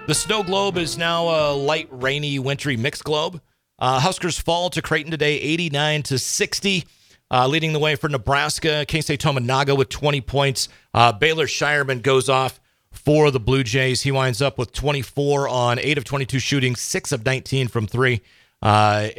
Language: English